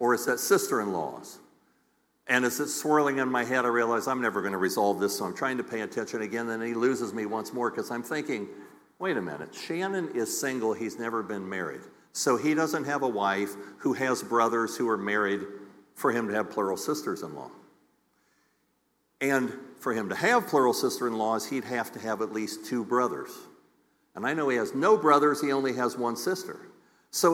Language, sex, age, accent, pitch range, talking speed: English, male, 50-69, American, 110-145 Hz, 200 wpm